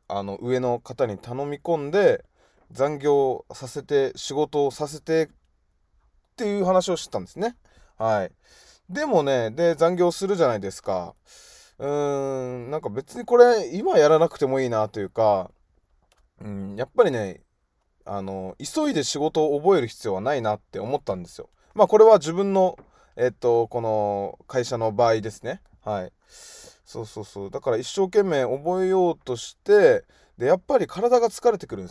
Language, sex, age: Japanese, male, 20-39